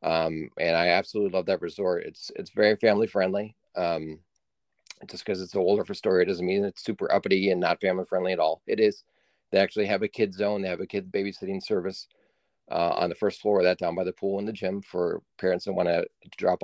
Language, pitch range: English, 90-105 Hz